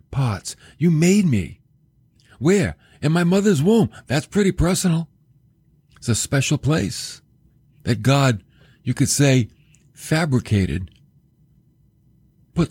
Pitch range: 125-155 Hz